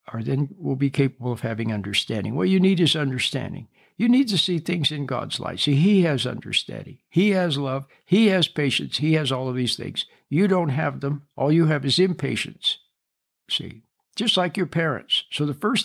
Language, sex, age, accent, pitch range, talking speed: English, male, 60-79, American, 125-170 Hz, 200 wpm